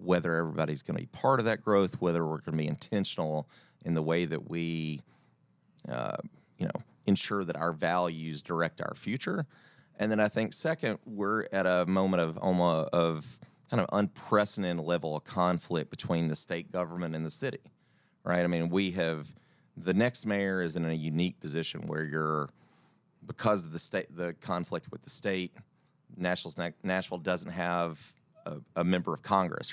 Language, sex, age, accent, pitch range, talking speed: English, male, 30-49, American, 80-95 Hz, 180 wpm